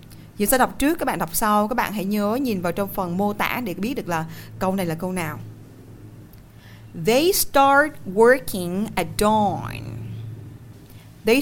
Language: Vietnamese